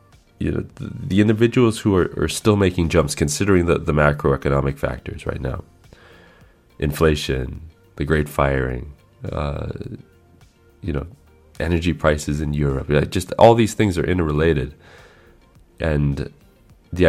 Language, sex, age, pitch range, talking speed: English, male, 30-49, 70-90 Hz, 135 wpm